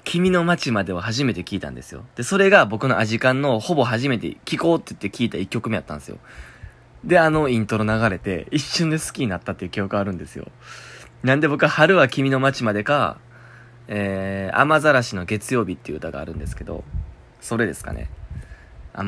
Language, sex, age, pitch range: Japanese, male, 20-39, 90-120 Hz